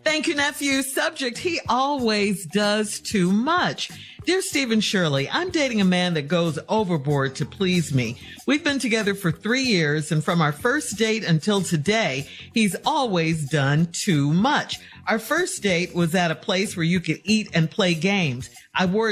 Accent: American